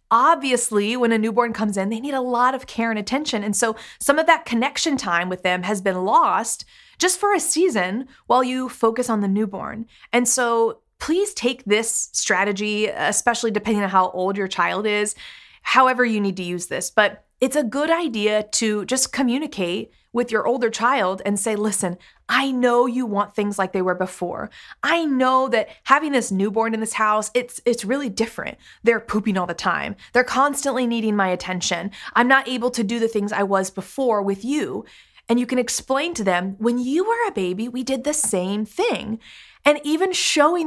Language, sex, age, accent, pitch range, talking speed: English, female, 30-49, American, 200-260 Hz, 200 wpm